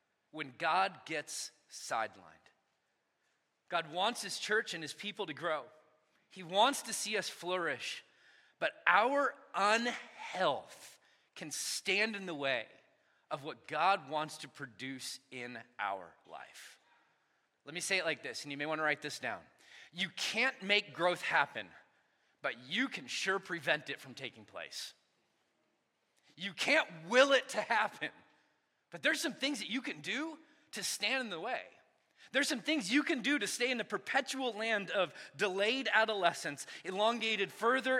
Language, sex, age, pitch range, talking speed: English, male, 30-49, 160-245 Hz, 160 wpm